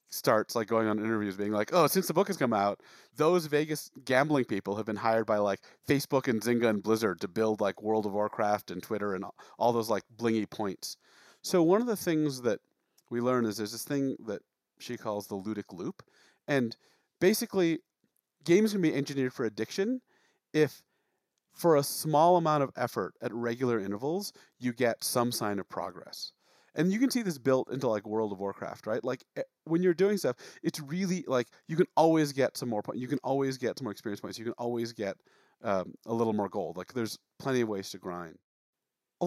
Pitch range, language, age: 110-155 Hz, English, 40-59